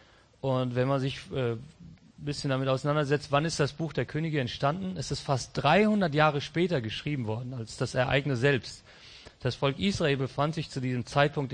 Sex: male